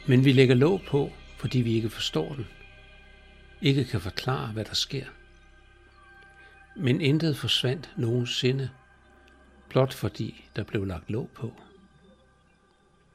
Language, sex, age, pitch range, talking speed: Danish, male, 60-79, 105-135 Hz, 125 wpm